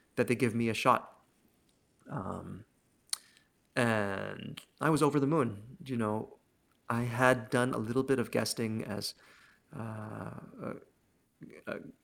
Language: English